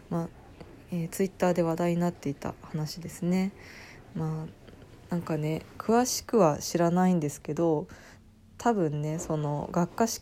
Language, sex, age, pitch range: Japanese, female, 20-39, 155-185 Hz